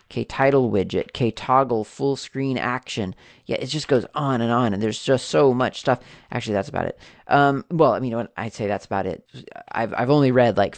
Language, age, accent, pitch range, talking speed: English, 30-49, American, 105-130 Hz, 230 wpm